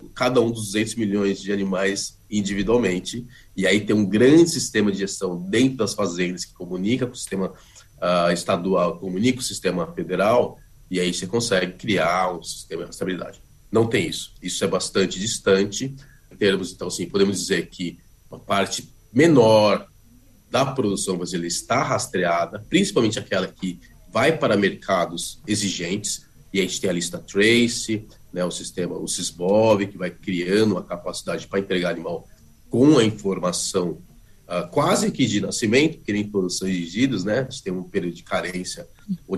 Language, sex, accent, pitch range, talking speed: Portuguese, male, Brazilian, 95-125 Hz, 165 wpm